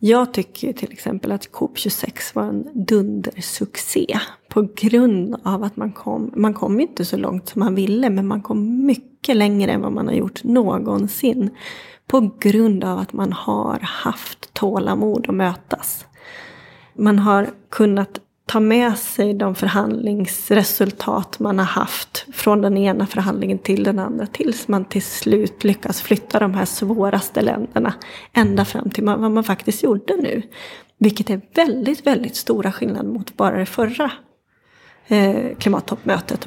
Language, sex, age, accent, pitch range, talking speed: Swedish, female, 30-49, native, 200-245 Hz, 150 wpm